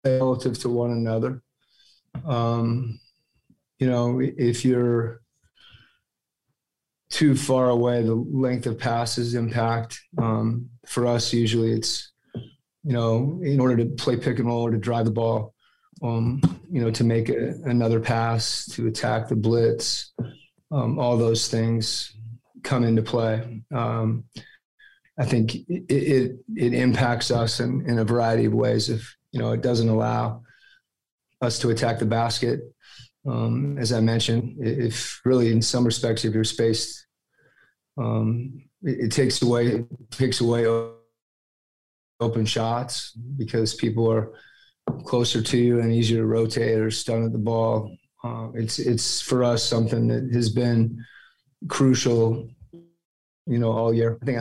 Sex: male